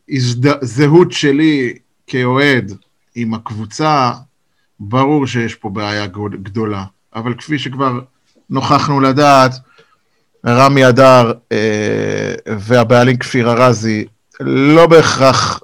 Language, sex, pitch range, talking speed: Hebrew, male, 115-145 Hz, 90 wpm